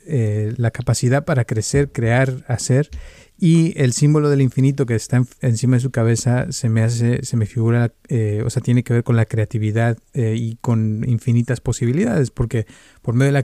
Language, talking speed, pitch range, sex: Spanish, 195 wpm, 115-130 Hz, male